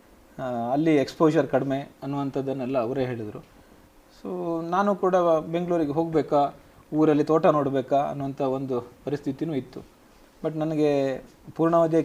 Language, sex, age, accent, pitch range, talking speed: Kannada, male, 30-49, native, 125-160 Hz, 105 wpm